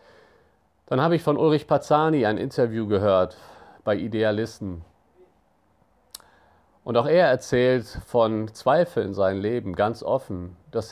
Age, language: 50-69, German